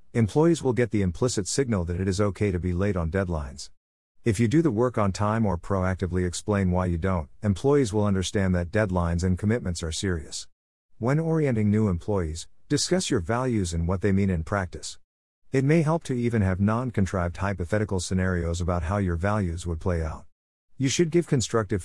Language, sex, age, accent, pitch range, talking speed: English, male, 50-69, American, 90-115 Hz, 190 wpm